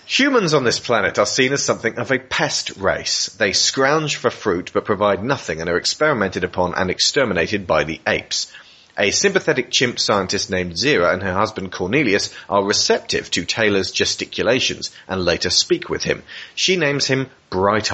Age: 30-49